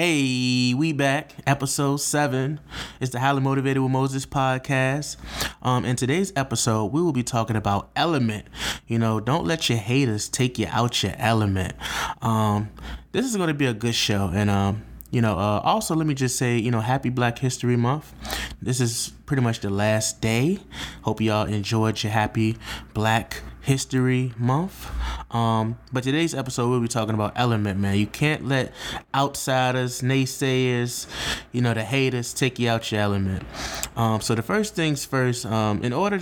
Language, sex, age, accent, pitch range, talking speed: English, male, 20-39, American, 115-145 Hz, 175 wpm